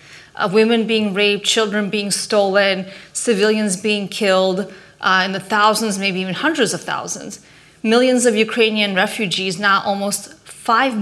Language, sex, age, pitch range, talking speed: Swedish, female, 30-49, 190-230 Hz, 140 wpm